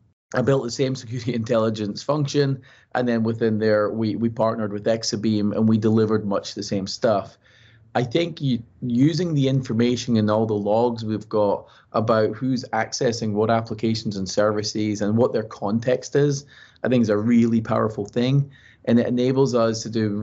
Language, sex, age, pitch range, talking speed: English, male, 30-49, 110-120 Hz, 180 wpm